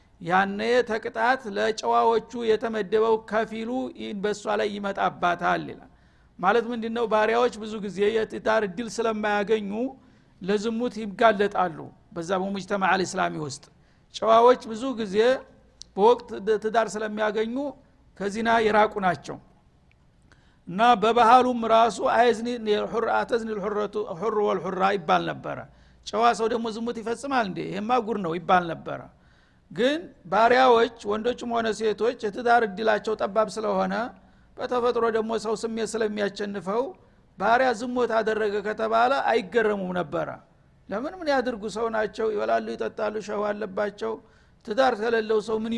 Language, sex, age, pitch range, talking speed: Amharic, male, 60-79, 205-235 Hz, 115 wpm